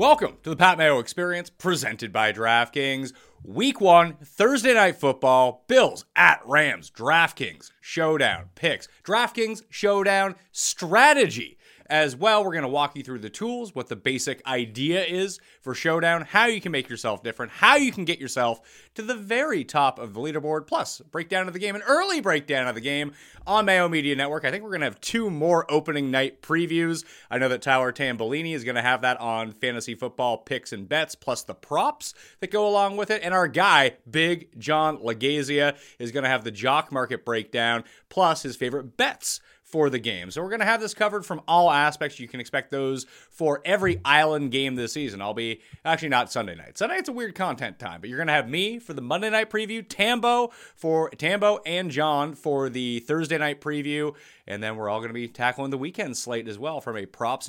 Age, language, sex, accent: 30-49, English, male, American